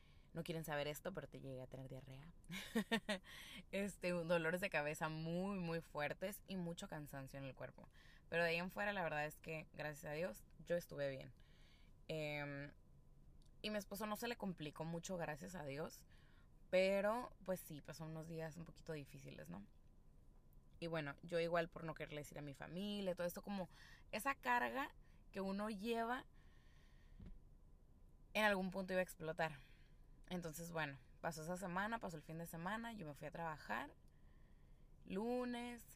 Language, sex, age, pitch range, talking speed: Spanish, female, 20-39, 140-180 Hz, 170 wpm